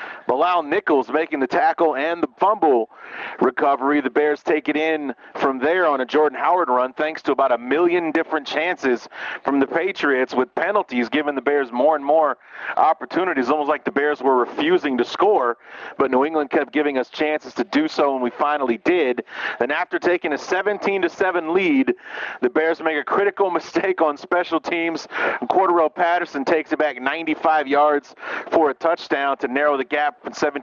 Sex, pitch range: male, 140-160 Hz